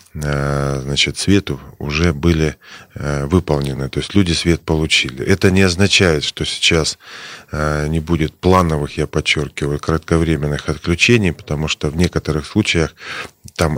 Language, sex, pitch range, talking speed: Russian, male, 75-85 Hz, 120 wpm